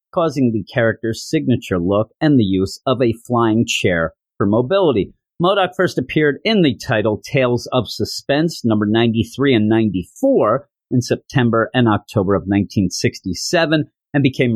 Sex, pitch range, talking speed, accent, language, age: male, 110-135 Hz, 145 wpm, American, English, 40-59